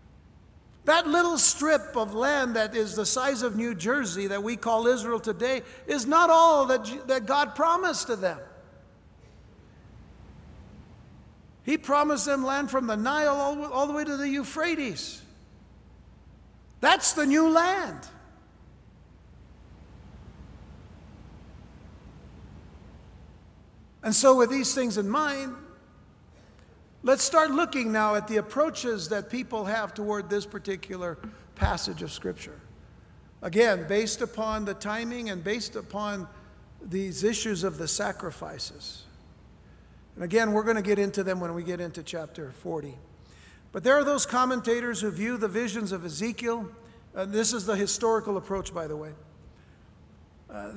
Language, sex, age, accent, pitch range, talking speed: English, male, 60-79, American, 155-250 Hz, 130 wpm